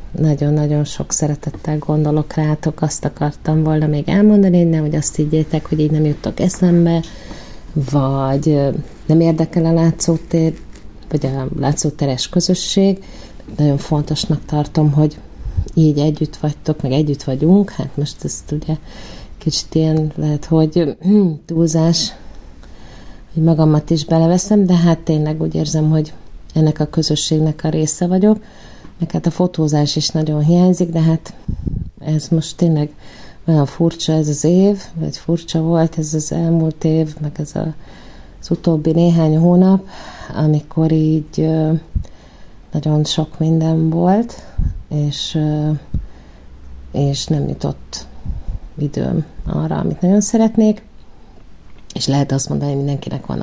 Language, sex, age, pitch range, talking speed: Hungarian, female, 30-49, 150-165 Hz, 130 wpm